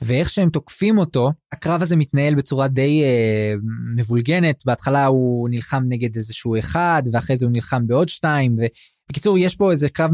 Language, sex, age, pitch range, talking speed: Hebrew, male, 20-39, 125-160 Hz, 165 wpm